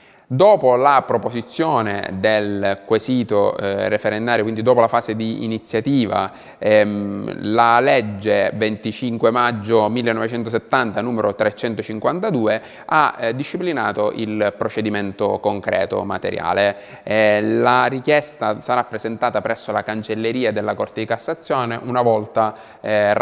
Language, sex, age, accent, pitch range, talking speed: Italian, male, 20-39, native, 105-125 Hz, 110 wpm